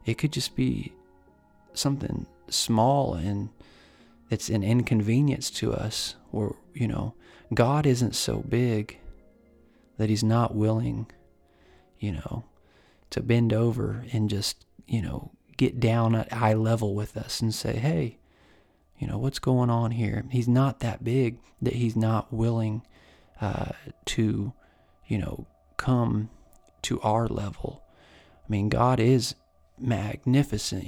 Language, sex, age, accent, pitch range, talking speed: English, male, 40-59, American, 95-125 Hz, 135 wpm